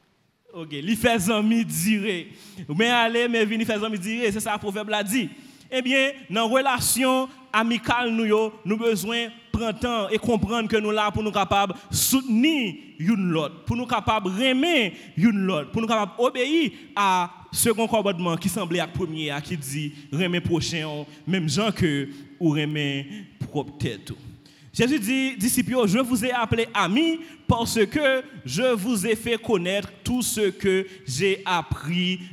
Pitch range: 170-235 Hz